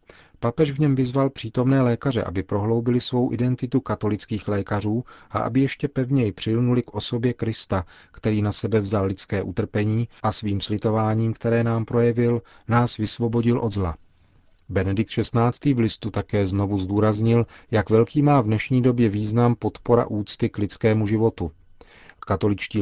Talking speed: 145 wpm